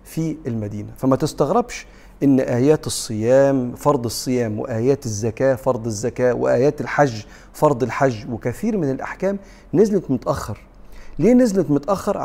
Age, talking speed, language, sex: 40-59, 120 wpm, Arabic, male